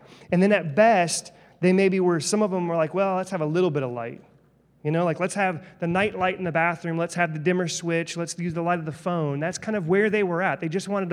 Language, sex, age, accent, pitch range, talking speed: English, male, 30-49, American, 145-195 Hz, 285 wpm